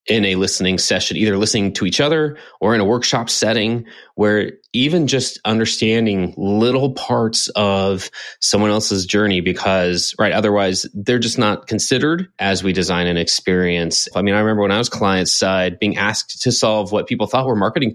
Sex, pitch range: male, 100-125 Hz